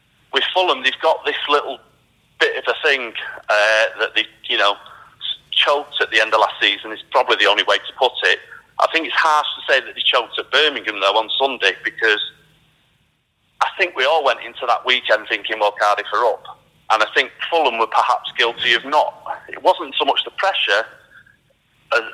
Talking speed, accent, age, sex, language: 200 wpm, British, 30-49, male, English